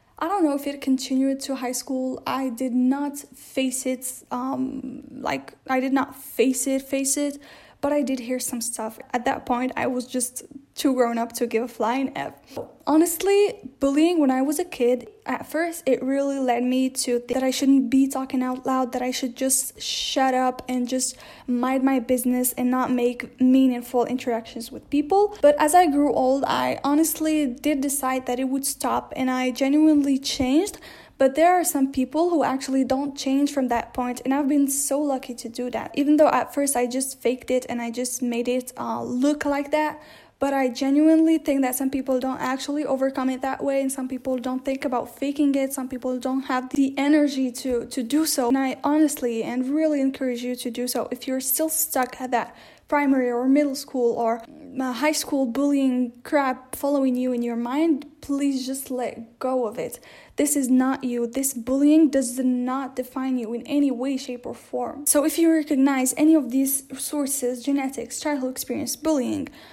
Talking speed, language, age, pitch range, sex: 200 wpm, English, 10-29, 255-285 Hz, female